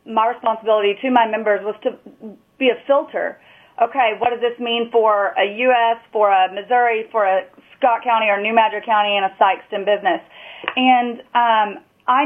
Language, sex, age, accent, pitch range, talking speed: English, female, 30-49, American, 215-260 Hz, 175 wpm